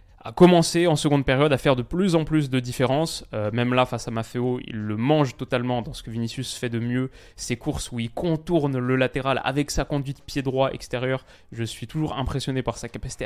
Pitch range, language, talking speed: 115-140 Hz, French, 220 wpm